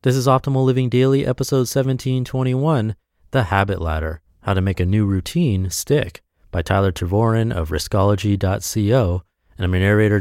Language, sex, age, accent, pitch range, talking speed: English, male, 30-49, American, 85-120 Hz, 155 wpm